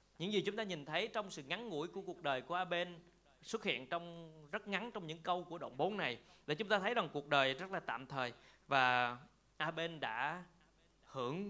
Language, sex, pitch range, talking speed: Vietnamese, male, 145-195 Hz, 230 wpm